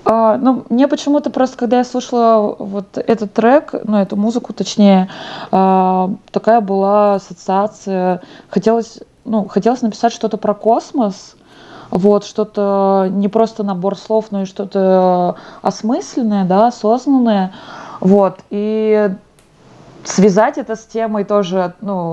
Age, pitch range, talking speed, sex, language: 20-39, 190-230 Hz, 125 wpm, female, Russian